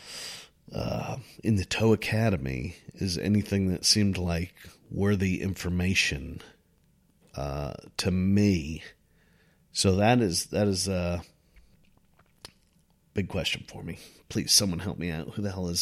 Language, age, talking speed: English, 40-59, 135 wpm